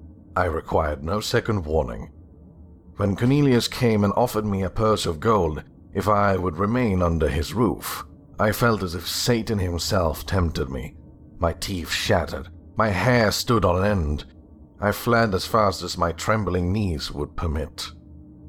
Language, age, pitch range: English, 50-69, 85-110 Hz